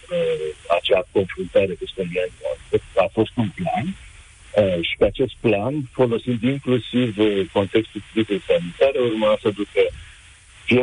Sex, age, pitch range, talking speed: male, 60-79, 95-125 Hz, 110 wpm